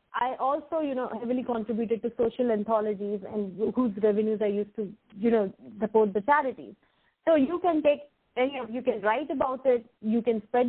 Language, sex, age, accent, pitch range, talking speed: English, female, 30-49, Indian, 200-235 Hz, 190 wpm